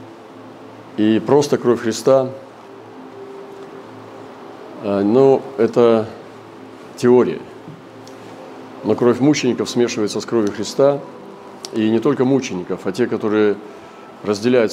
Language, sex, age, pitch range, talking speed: Russian, male, 40-59, 105-130 Hz, 90 wpm